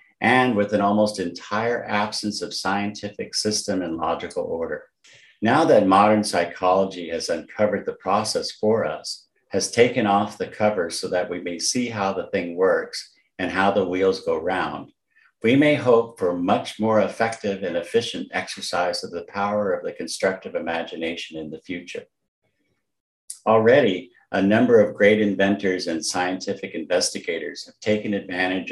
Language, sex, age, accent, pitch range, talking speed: English, male, 50-69, American, 95-115 Hz, 155 wpm